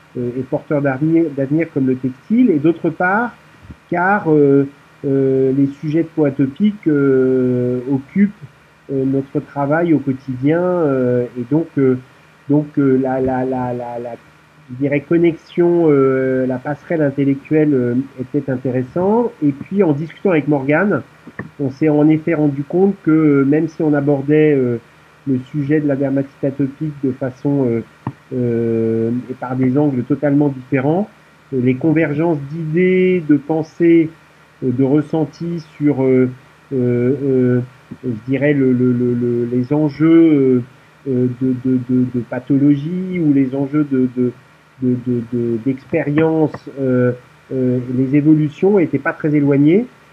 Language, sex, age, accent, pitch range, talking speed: English, male, 40-59, French, 130-155 Hz, 145 wpm